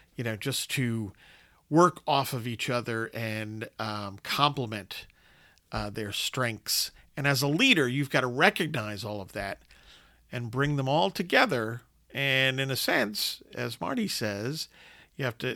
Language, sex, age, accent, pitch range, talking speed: English, male, 50-69, American, 115-160 Hz, 160 wpm